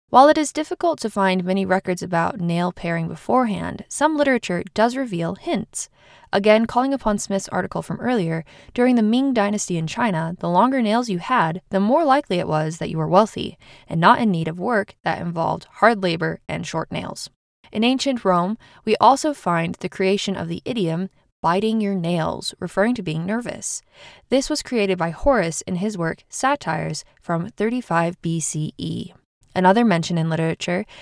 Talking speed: 175 wpm